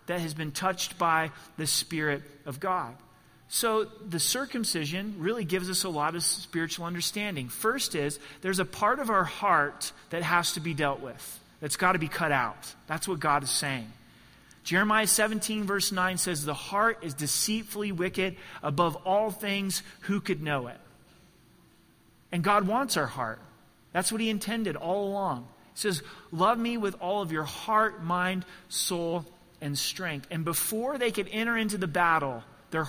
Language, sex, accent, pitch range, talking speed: English, male, American, 150-200 Hz, 170 wpm